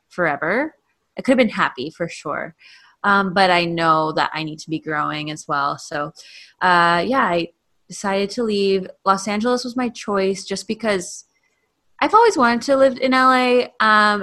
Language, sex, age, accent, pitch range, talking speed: English, female, 20-39, American, 165-220 Hz, 175 wpm